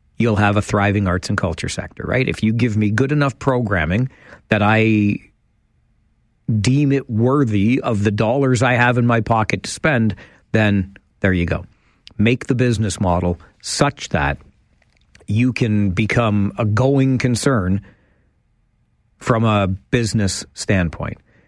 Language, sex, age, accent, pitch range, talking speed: English, male, 50-69, American, 100-125 Hz, 140 wpm